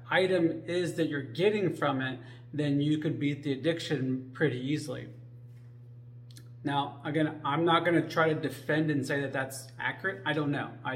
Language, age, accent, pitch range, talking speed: English, 30-49, American, 130-160 Hz, 175 wpm